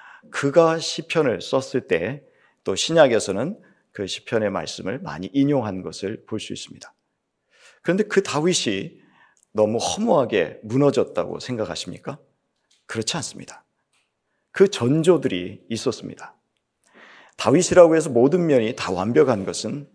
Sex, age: male, 40-59